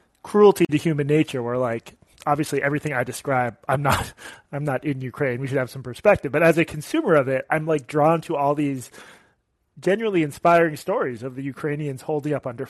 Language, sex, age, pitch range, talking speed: English, male, 30-49, 125-155 Hz, 200 wpm